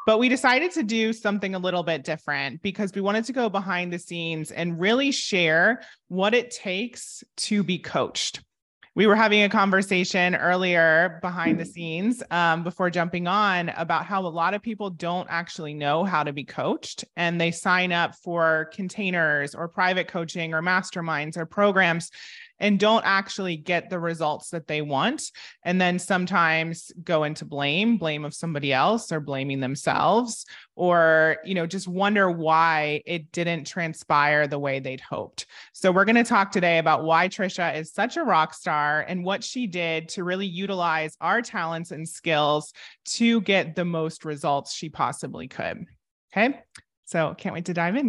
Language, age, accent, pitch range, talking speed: English, 30-49, American, 160-205 Hz, 175 wpm